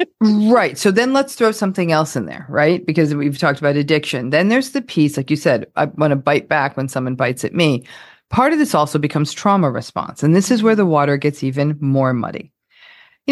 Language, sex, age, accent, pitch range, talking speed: English, female, 40-59, American, 140-180 Hz, 225 wpm